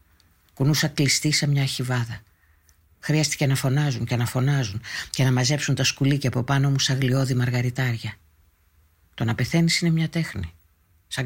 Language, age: Greek, 50-69